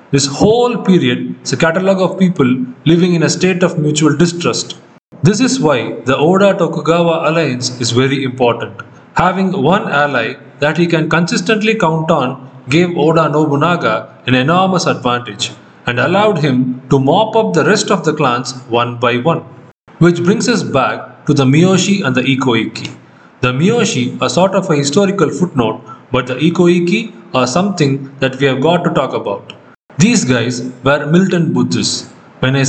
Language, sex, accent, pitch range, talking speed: Tamil, male, native, 130-175 Hz, 165 wpm